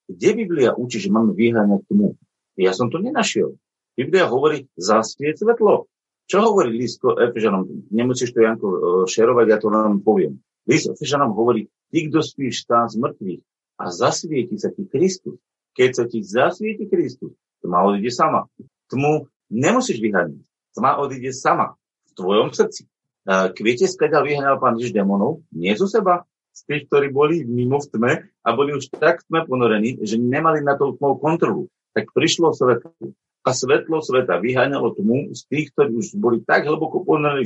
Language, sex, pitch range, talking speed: Slovak, male, 115-150 Hz, 160 wpm